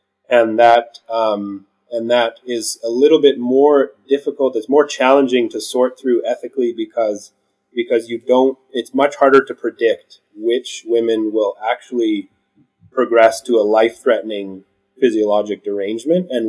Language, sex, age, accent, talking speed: English, male, 30-49, American, 140 wpm